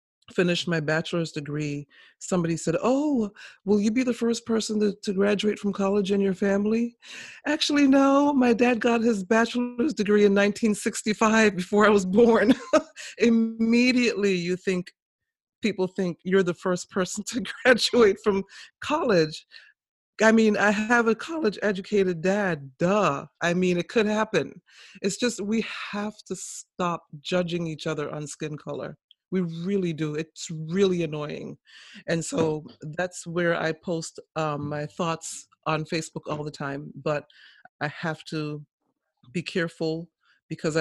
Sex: female